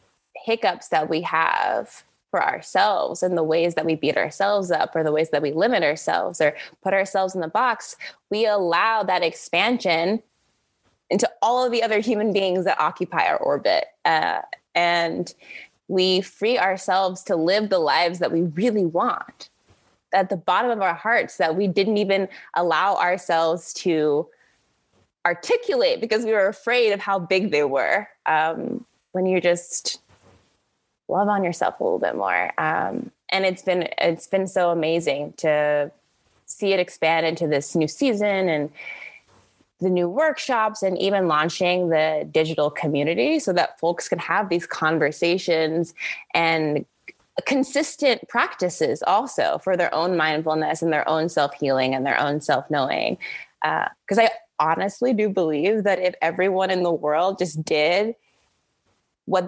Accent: American